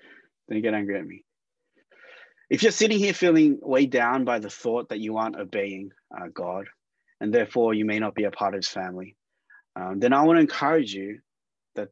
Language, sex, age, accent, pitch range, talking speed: English, male, 30-49, Australian, 105-170 Hz, 200 wpm